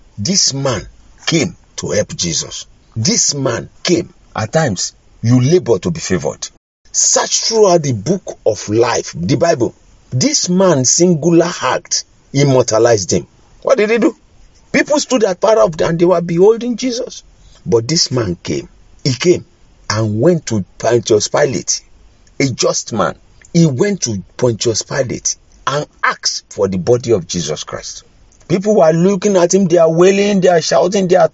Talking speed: 165 wpm